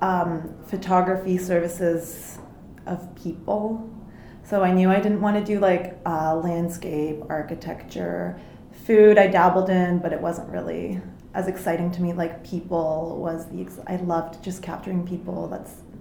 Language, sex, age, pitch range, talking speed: English, female, 20-39, 175-190 Hz, 145 wpm